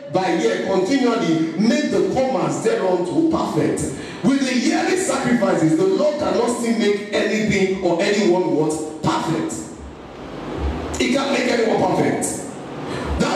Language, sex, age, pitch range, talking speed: English, male, 50-69, 195-280 Hz, 130 wpm